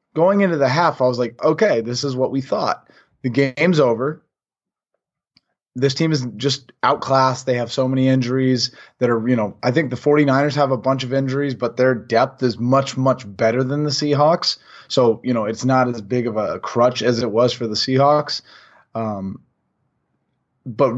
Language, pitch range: English, 120-145 Hz